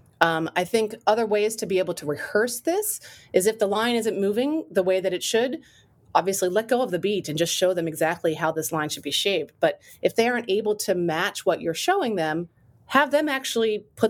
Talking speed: 230 wpm